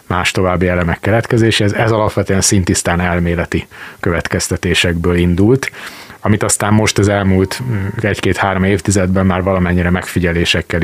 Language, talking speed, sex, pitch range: Hungarian, 110 wpm, male, 90-105 Hz